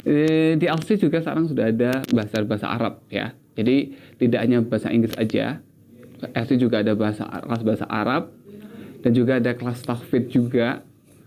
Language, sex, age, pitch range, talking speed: Indonesian, male, 20-39, 120-160 Hz, 150 wpm